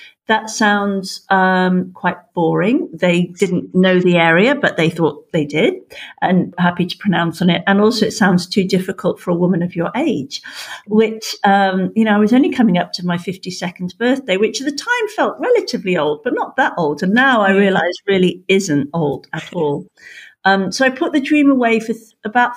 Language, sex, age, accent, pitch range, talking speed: English, female, 50-69, British, 180-225 Hz, 200 wpm